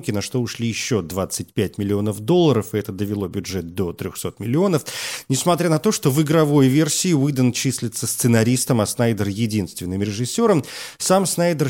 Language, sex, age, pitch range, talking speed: Russian, male, 40-59, 105-140 Hz, 155 wpm